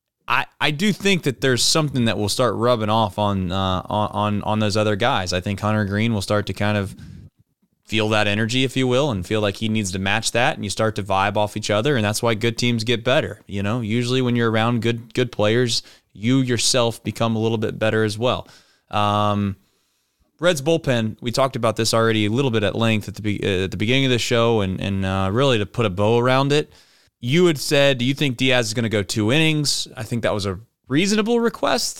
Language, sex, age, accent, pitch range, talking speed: English, male, 20-39, American, 105-150 Hz, 240 wpm